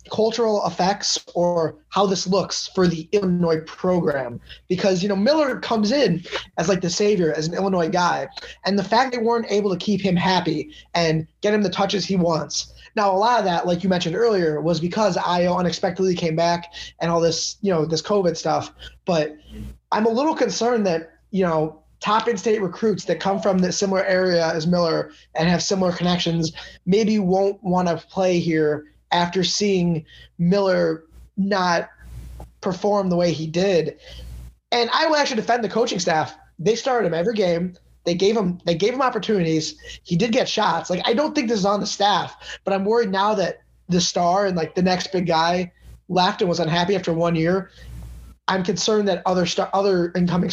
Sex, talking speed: male, 195 wpm